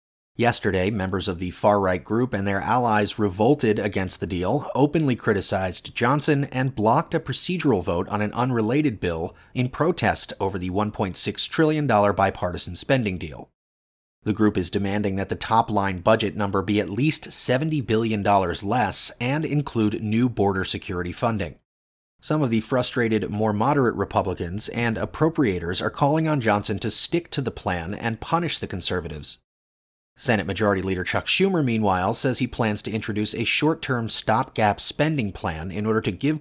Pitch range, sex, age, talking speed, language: 95-125 Hz, male, 30-49, 160 wpm, English